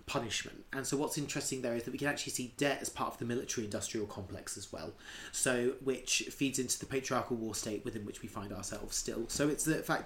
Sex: male